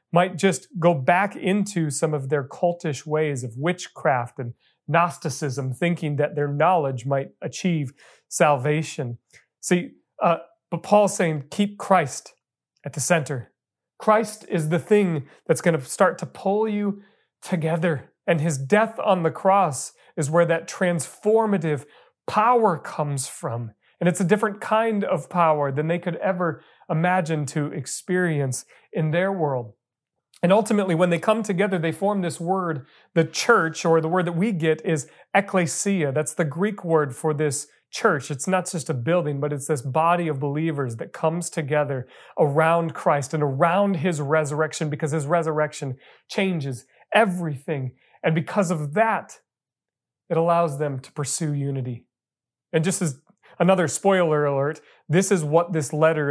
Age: 40-59